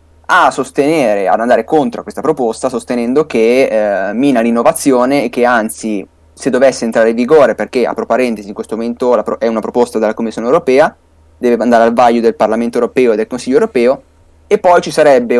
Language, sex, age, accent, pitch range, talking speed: Italian, male, 20-39, native, 110-130 Hz, 190 wpm